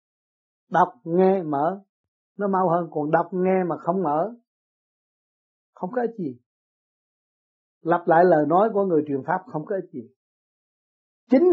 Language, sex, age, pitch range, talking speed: Vietnamese, male, 60-79, 140-185 Hz, 150 wpm